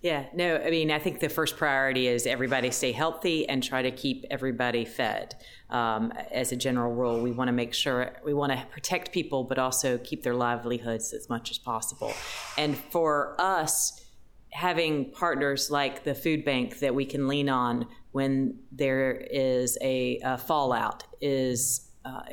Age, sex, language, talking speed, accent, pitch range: 30-49, female, English, 175 wpm, American, 125-150 Hz